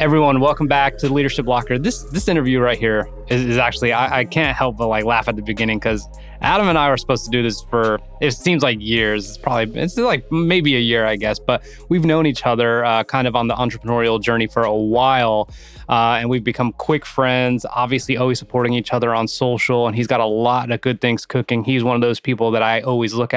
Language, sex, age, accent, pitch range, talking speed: English, male, 20-39, American, 120-145 Hz, 240 wpm